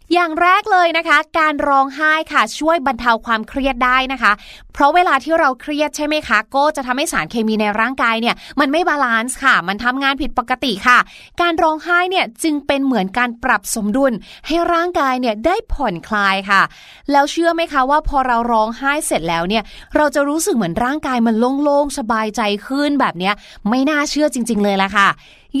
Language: Thai